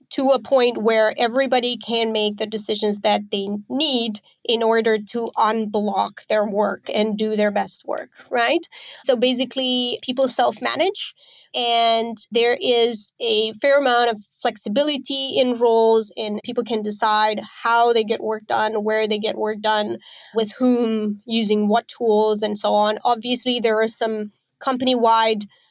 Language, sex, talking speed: English, female, 150 wpm